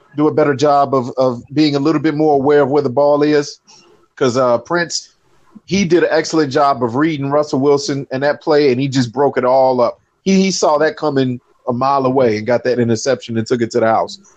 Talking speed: 240 wpm